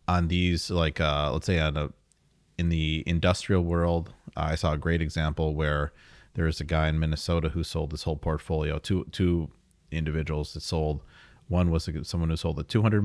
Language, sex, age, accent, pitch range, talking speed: English, male, 30-49, American, 75-90 Hz, 190 wpm